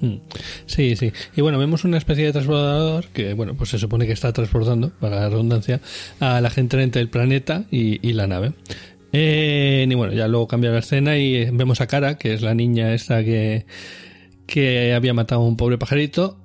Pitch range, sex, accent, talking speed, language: 110-140 Hz, male, Spanish, 200 wpm, Spanish